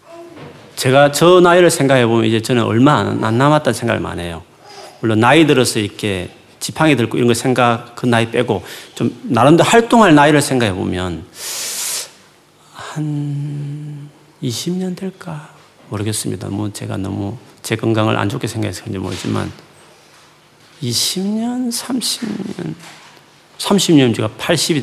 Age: 40-59